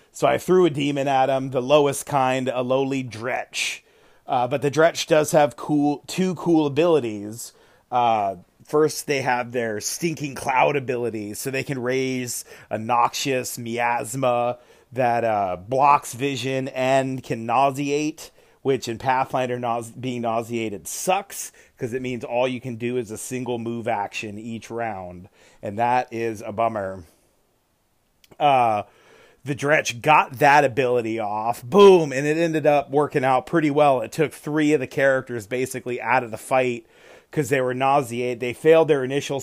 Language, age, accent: English, 30-49, American